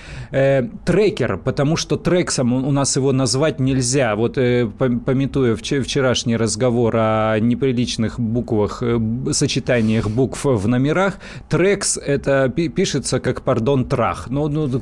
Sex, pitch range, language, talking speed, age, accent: male, 115-140 Hz, Russian, 110 wpm, 30-49, native